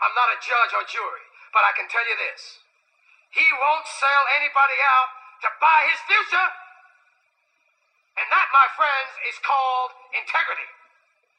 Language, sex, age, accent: Chinese, male, 40-59, American